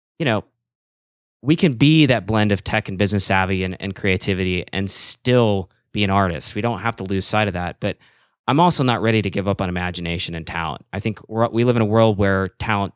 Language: English